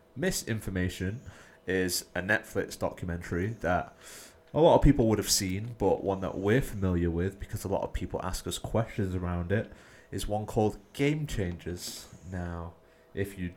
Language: English